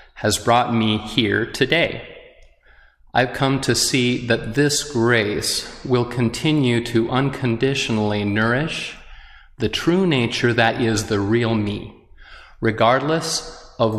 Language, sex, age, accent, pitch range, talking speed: English, male, 30-49, American, 105-125 Hz, 115 wpm